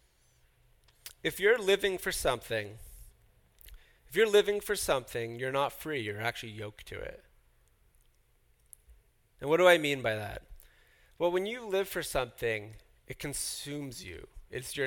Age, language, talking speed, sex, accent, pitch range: 30-49, English, 145 wpm, male, American, 100-140 Hz